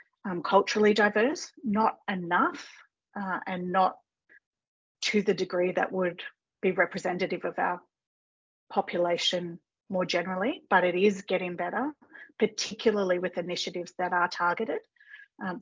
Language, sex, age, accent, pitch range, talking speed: English, female, 40-59, Australian, 185-235 Hz, 125 wpm